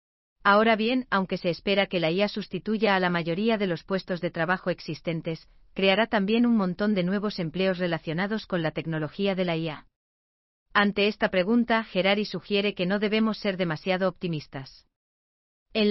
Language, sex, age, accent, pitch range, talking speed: German, female, 40-59, Spanish, 170-205 Hz, 165 wpm